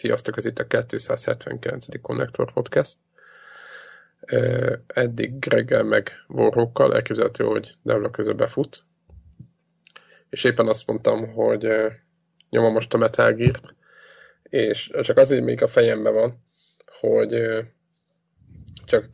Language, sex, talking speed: Hungarian, male, 105 wpm